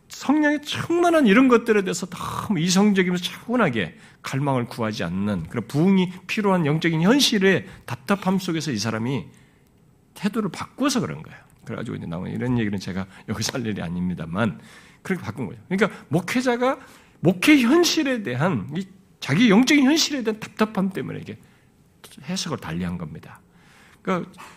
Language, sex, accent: Korean, male, native